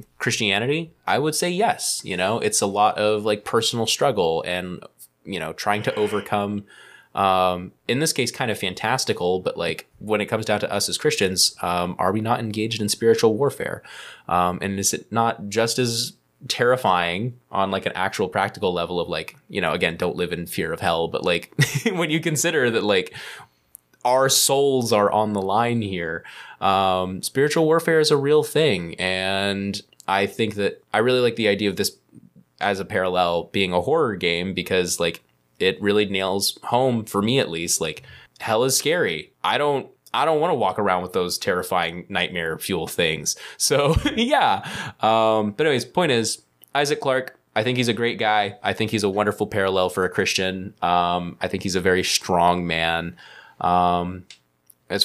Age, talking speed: 20-39, 185 wpm